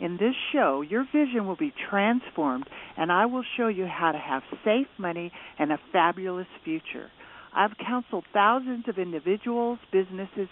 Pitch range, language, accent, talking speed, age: 175-255 Hz, English, American, 160 wpm, 60-79